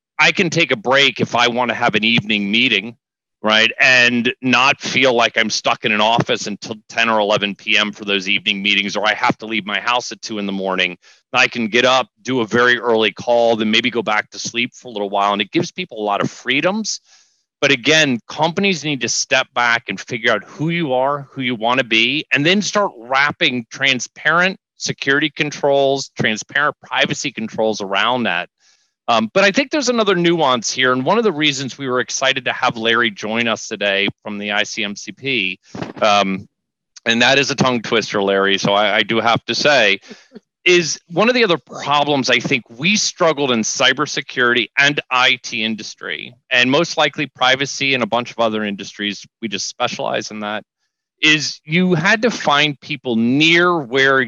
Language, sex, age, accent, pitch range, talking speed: English, male, 30-49, American, 110-145 Hz, 200 wpm